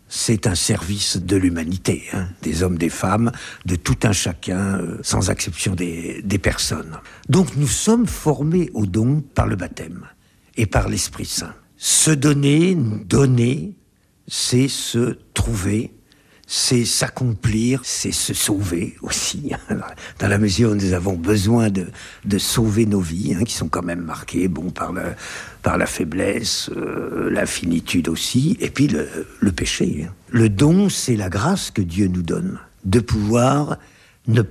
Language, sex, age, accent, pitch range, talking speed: French, male, 60-79, French, 95-125 Hz, 155 wpm